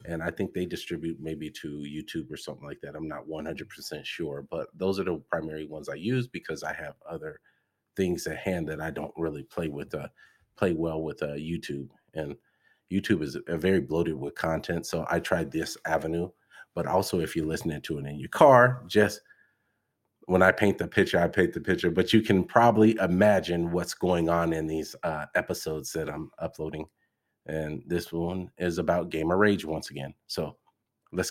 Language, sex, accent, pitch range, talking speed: English, male, American, 80-105 Hz, 195 wpm